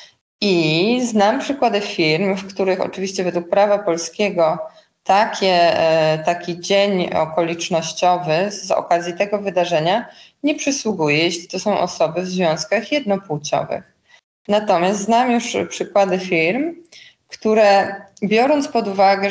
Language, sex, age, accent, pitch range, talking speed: Polish, female, 20-39, native, 180-220 Hz, 110 wpm